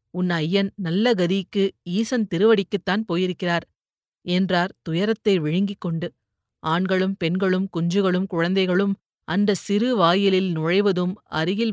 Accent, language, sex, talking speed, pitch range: native, Tamil, female, 100 wpm, 175-205 Hz